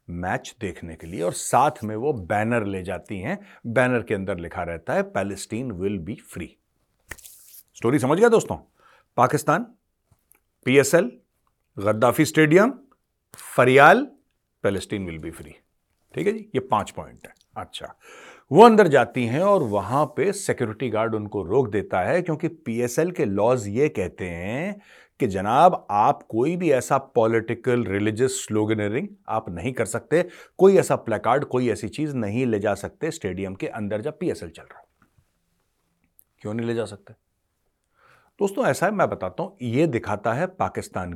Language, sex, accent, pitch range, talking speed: Hindi, male, native, 100-155 Hz, 160 wpm